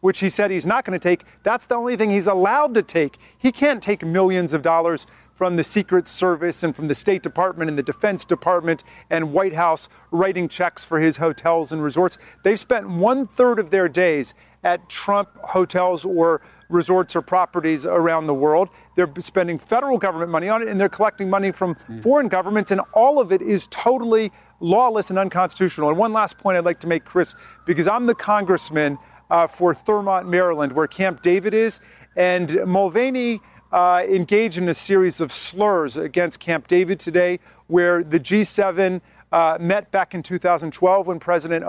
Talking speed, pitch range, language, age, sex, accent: 185 wpm, 170-200 Hz, English, 40-59, male, American